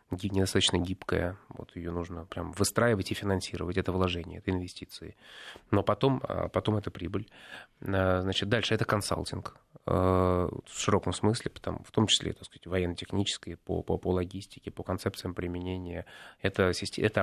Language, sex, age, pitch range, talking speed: Russian, male, 20-39, 90-105 Hz, 135 wpm